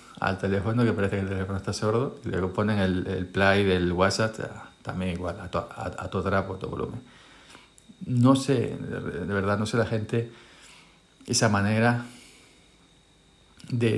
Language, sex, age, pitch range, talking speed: Spanish, male, 50-69, 95-115 Hz, 170 wpm